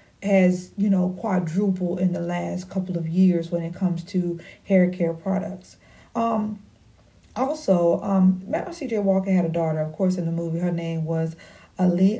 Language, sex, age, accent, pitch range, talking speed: English, female, 40-59, American, 175-195 Hz, 165 wpm